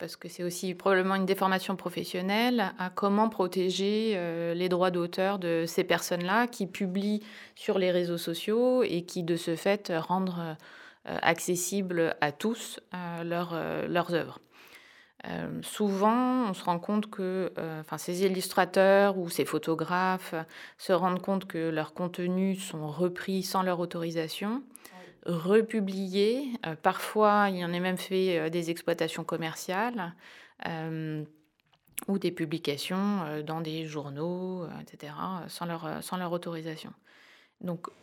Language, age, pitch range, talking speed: French, 20-39, 165-195 Hz, 140 wpm